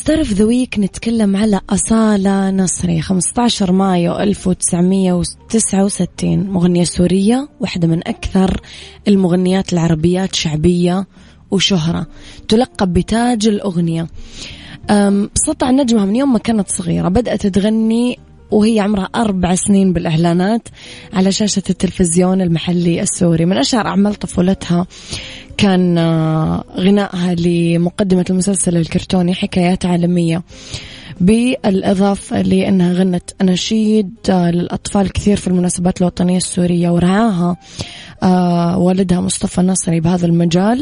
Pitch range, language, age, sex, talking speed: 175-205 Hz, English, 20-39, female, 100 wpm